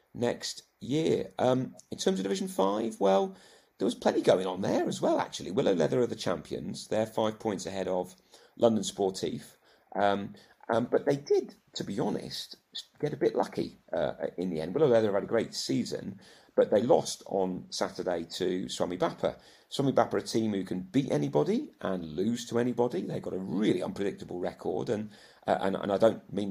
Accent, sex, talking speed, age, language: British, male, 190 wpm, 40-59, English